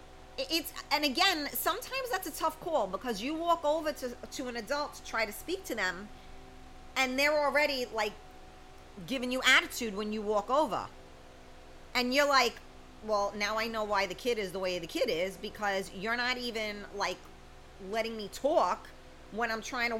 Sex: female